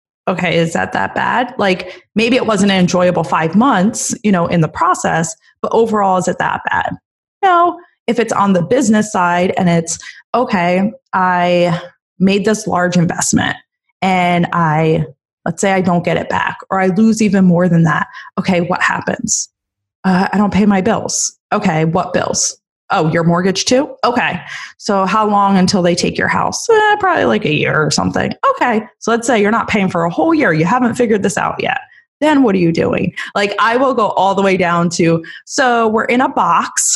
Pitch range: 180-275 Hz